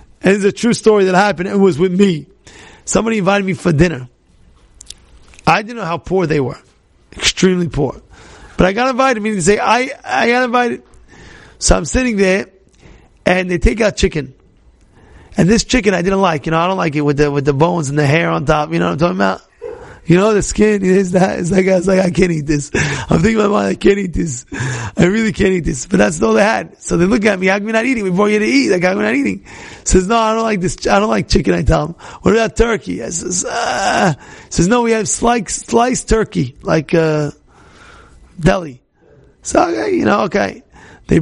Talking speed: 240 wpm